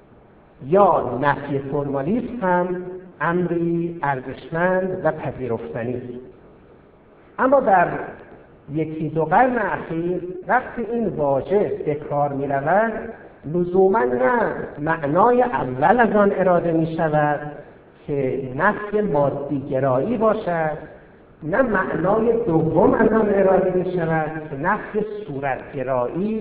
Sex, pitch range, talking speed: male, 140-200 Hz, 95 wpm